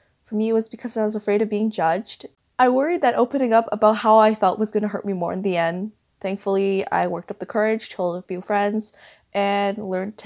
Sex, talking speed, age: female, 235 wpm, 20-39